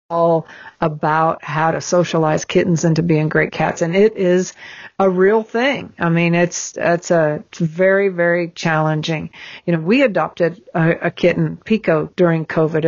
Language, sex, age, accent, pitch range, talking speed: English, female, 50-69, American, 170-200 Hz, 165 wpm